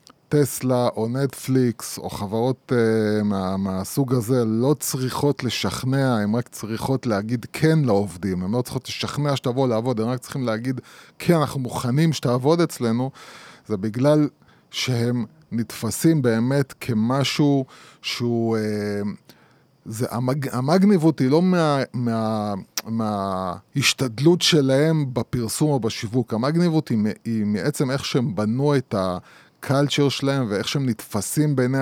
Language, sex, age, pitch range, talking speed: Hebrew, male, 20-39, 110-145 Hz, 125 wpm